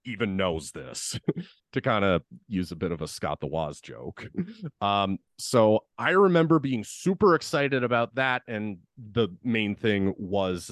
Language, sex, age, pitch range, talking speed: English, male, 30-49, 90-115 Hz, 160 wpm